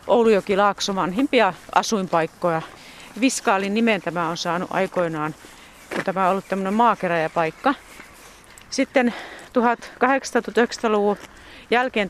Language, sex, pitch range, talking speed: Finnish, female, 170-205 Hz, 105 wpm